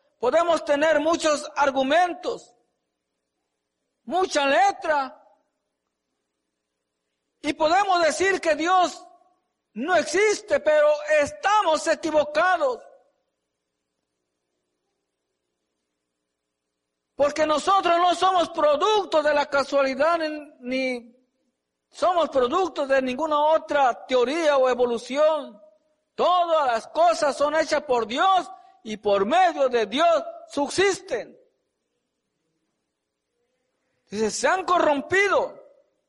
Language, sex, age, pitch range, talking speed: English, male, 50-69, 235-330 Hz, 80 wpm